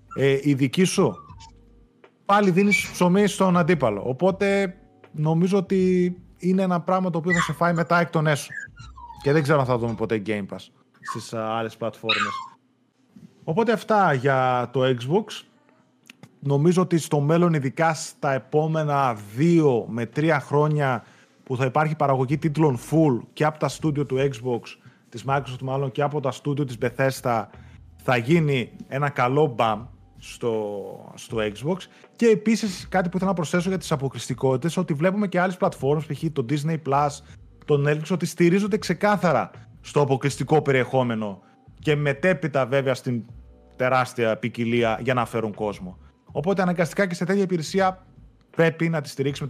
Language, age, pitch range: Greek, 30-49, 125-180 Hz